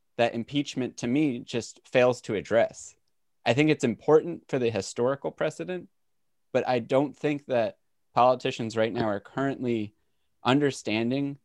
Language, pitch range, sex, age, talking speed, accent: English, 115-145 Hz, male, 20-39, 140 wpm, American